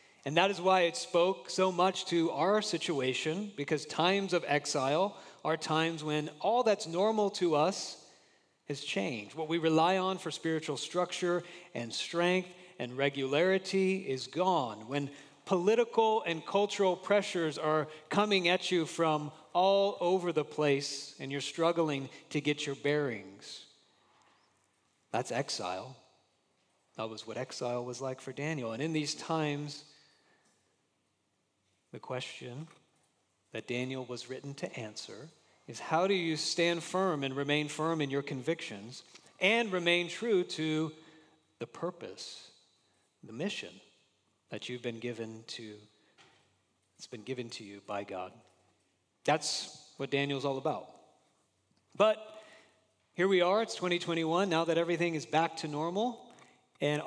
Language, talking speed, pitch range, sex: English, 140 wpm, 135-180 Hz, male